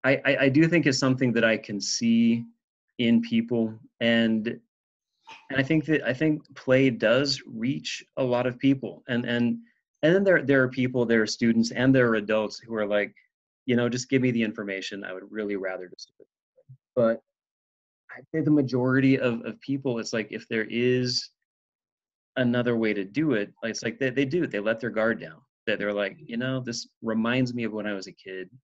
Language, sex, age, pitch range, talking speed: English, male, 30-49, 105-130 Hz, 210 wpm